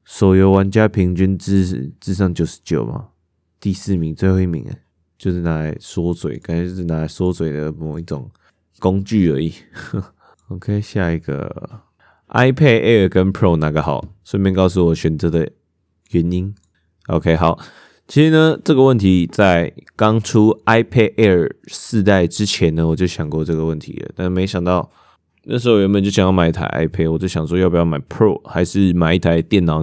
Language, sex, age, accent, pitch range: Chinese, male, 20-39, native, 80-95 Hz